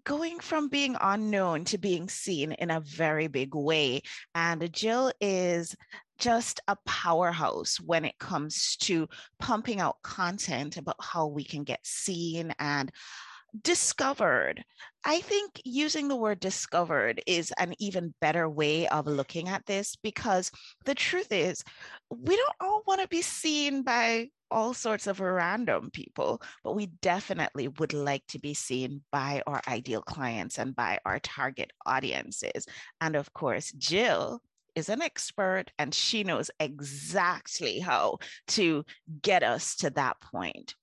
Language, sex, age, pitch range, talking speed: English, female, 30-49, 155-240 Hz, 145 wpm